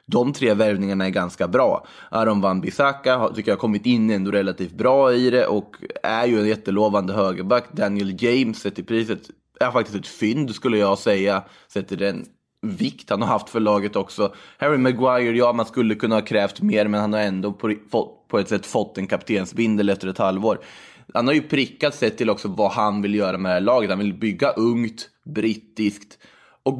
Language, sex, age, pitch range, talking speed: English, male, 20-39, 100-120 Hz, 195 wpm